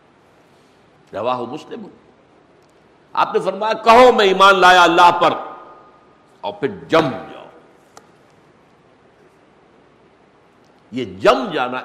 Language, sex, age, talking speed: Urdu, male, 60-79, 85 wpm